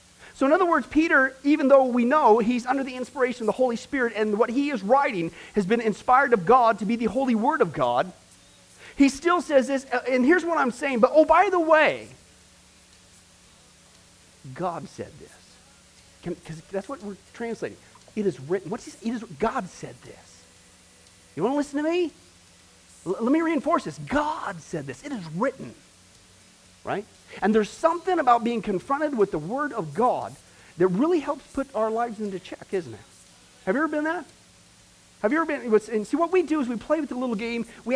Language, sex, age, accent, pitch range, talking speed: English, male, 40-59, American, 200-300 Hz, 205 wpm